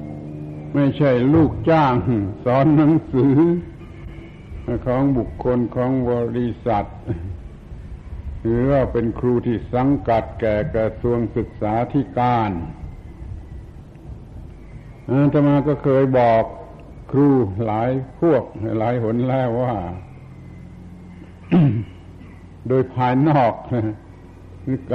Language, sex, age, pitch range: Thai, male, 70-89, 95-130 Hz